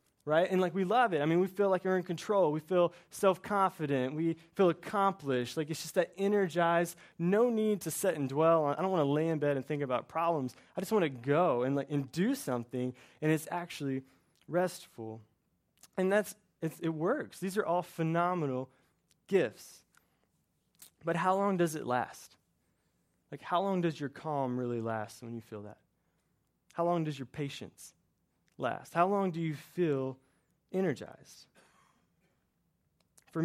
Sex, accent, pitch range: male, American, 125-175 Hz